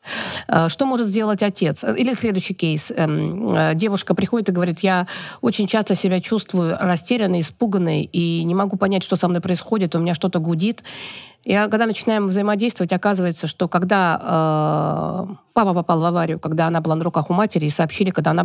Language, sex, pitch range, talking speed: Russian, female, 175-210 Hz, 170 wpm